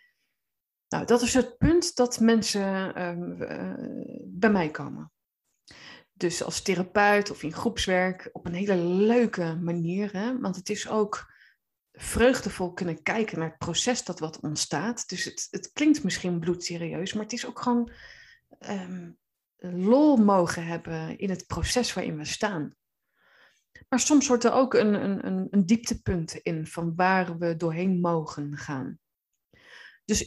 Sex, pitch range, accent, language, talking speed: female, 170-230 Hz, Dutch, Dutch, 145 wpm